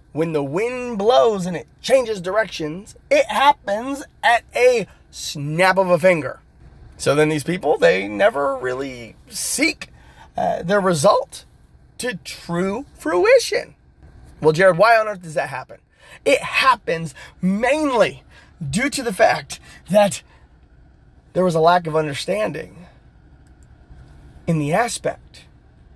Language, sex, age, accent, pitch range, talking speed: English, male, 30-49, American, 150-230 Hz, 125 wpm